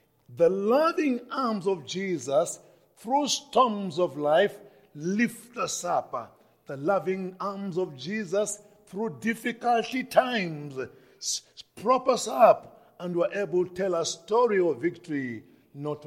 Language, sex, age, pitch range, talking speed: English, male, 50-69, 140-205 Hz, 125 wpm